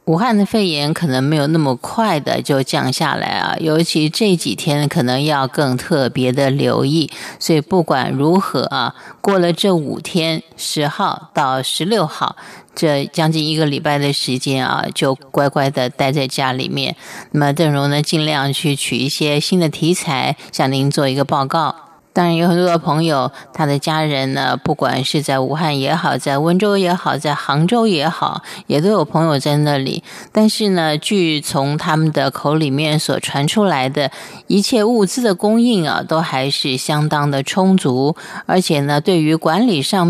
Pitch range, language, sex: 140-180 Hz, Chinese, female